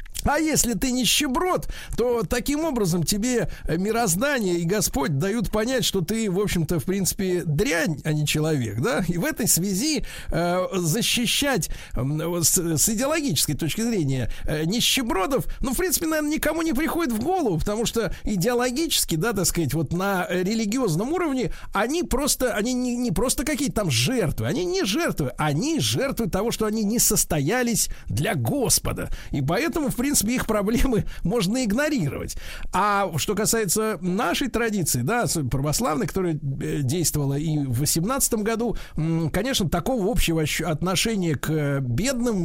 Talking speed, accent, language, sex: 150 wpm, native, Russian, male